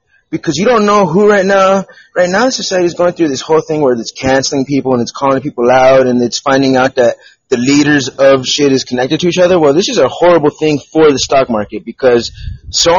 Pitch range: 130-190 Hz